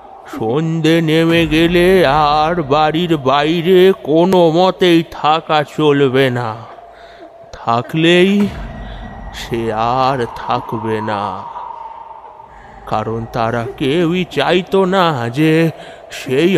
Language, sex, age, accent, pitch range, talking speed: Bengali, male, 30-49, native, 125-170 Hz, 60 wpm